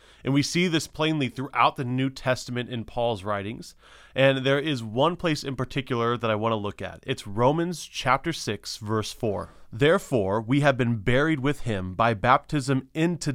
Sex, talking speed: male, 185 wpm